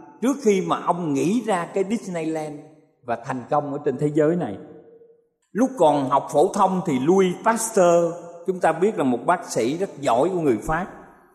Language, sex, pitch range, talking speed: Vietnamese, male, 150-210 Hz, 190 wpm